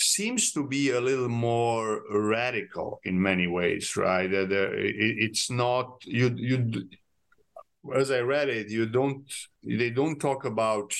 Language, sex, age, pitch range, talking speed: English, male, 50-69, 100-125 Hz, 135 wpm